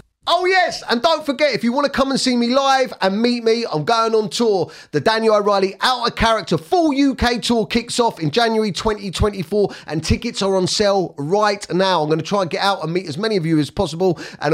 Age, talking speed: 30-49, 240 wpm